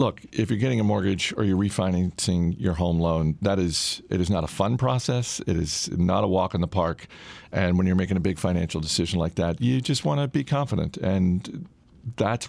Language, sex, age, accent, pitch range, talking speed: English, male, 50-69, American, 90-105 Hz, 220 wpm